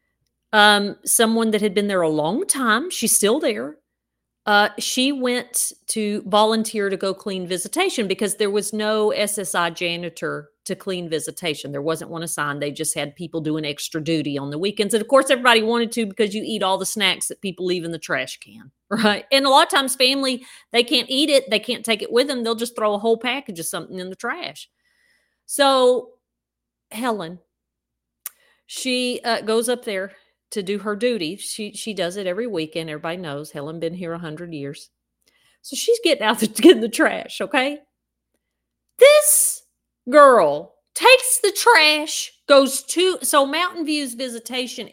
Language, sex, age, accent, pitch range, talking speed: English, female, 40-59, American, 185-265 Hz, 185 wpm